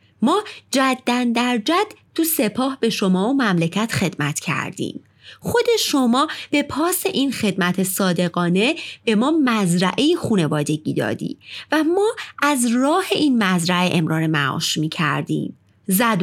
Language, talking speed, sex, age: Persian, 130 wpm, female, 30-49